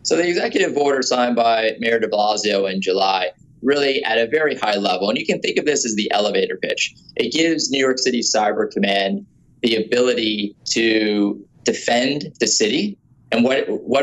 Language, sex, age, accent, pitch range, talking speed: English, male, 20-39, American, 105-130 Hz, 185 wpm